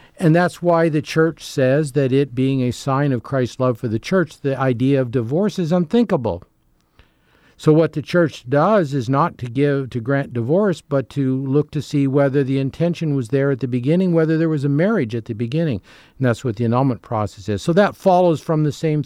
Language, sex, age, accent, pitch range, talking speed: English, male, 50-69, American, 130-165 Hz, 215 wpm